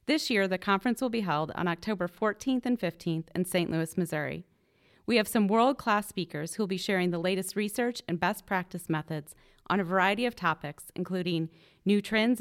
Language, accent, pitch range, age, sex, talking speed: English, American, 180-230 Hz, 30-49, female, 195 wpm